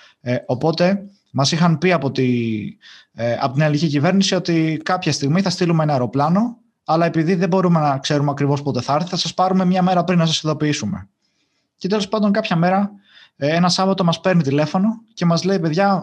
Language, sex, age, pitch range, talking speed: Greek, male, 20-39, 140-185 Hz, 185 wpm